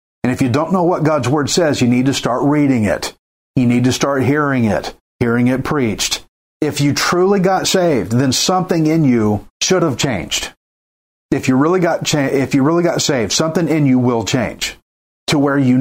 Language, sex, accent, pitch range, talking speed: English, male, American, 120-150 Hz, 205 wpm